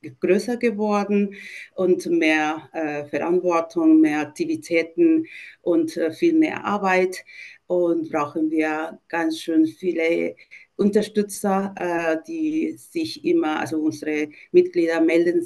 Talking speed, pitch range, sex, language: 110 wpm, 160-240 Hz, female, German